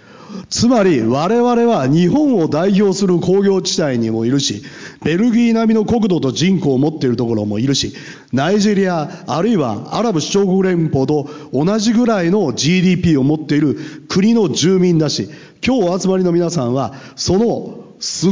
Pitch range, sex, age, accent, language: 135-195 Hz, male, 40-59, native, Japanese